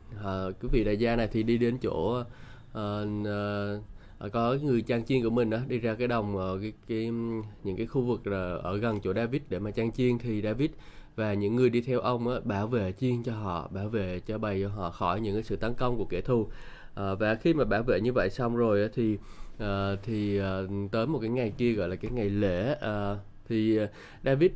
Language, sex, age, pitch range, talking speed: Vietnamese, male, 20-39, 105-125 Hz, 230 wpm